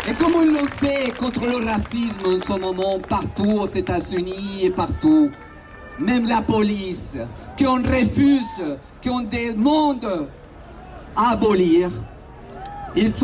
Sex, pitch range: male, 205-265 Hz